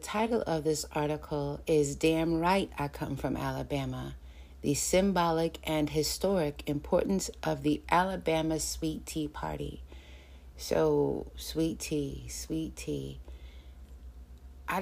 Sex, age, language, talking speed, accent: female, 30-49, English, 115 wpm, American